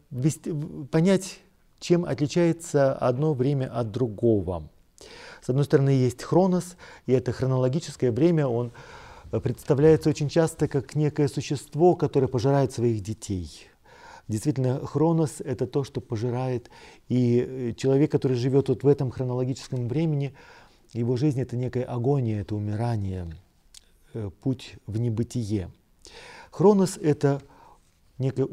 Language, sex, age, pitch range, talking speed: Russian, male, 40-59, 115-155 Hz, 115 wpm